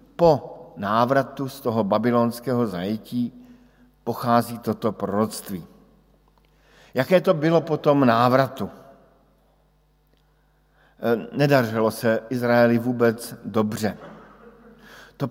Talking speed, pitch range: 80 wpm, 110-140 Hz